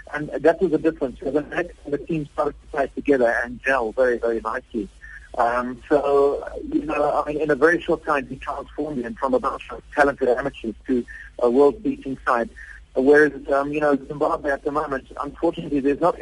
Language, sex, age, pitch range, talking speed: English, male, 50-69, 125-150 Hz, 185 wpm